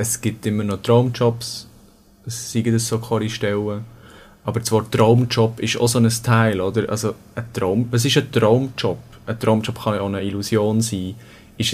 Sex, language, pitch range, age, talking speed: male, German, 100-120 Hz, 20-39, 170 wpm